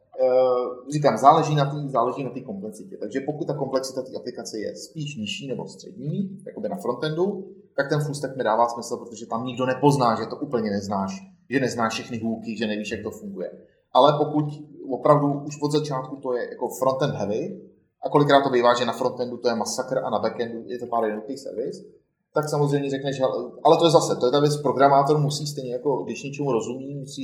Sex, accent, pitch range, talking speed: male, native, 125-150 Hz, 200 wpm